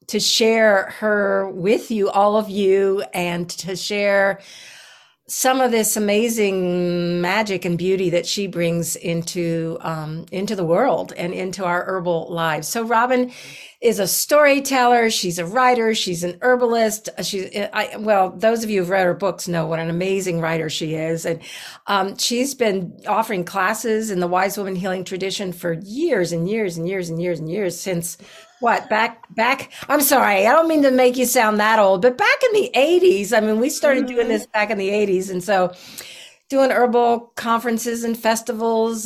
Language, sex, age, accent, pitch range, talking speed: English, female, 50-69, American, 185-230 Hz, 180 wpm